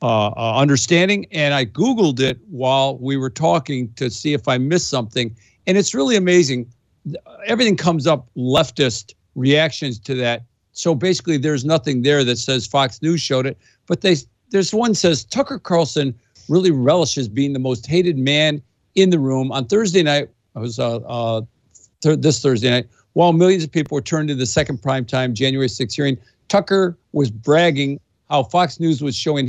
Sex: male